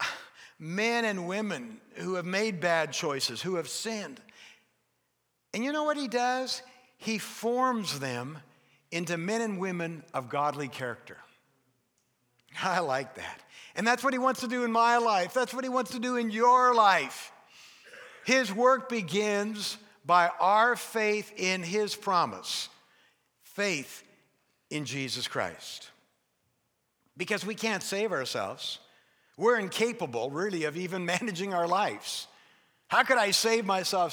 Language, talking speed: English, 140 wpm